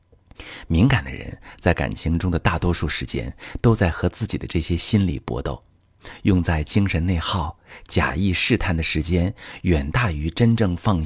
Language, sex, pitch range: Chinese, male, 85-115 Hz